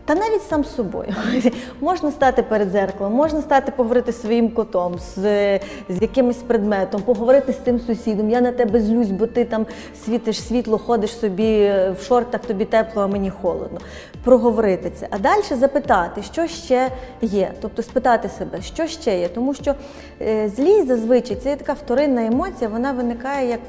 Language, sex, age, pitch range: Ukrainian, female, 20-39, 210-255 Hz